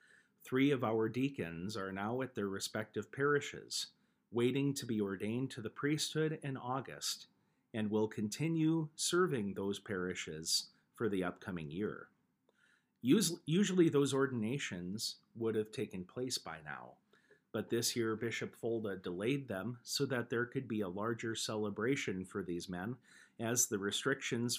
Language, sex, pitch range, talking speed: English, male, 105-135 Hz, 145 wpm